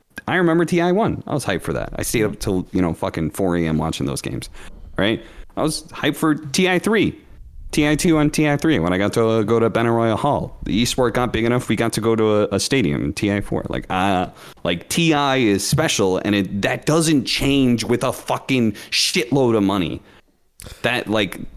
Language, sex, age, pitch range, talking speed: English, male, 30-49, 95-125 Hz, 215 wpm